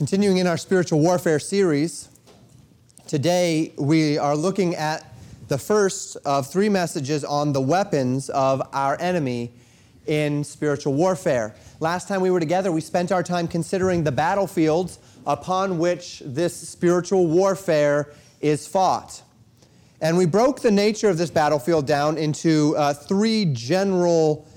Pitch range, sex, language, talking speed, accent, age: 145-175 Hz, male, English, 140 wpm, American, 30-49